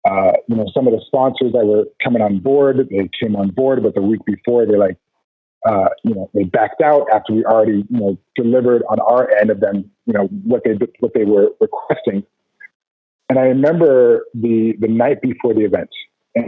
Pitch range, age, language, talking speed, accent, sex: 105-140 Hz, 40-59, English, 210 wpm, American, male